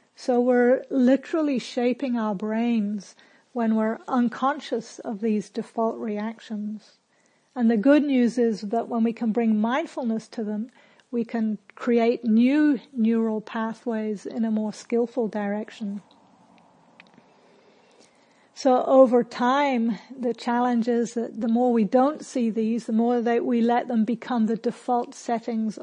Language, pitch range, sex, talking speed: English, 220-245 Hz, female, 140 wpm